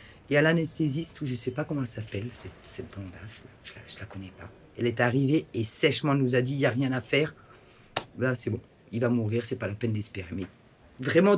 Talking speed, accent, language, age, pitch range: 250 wpm, French, French, 40-59, 105-125 Hz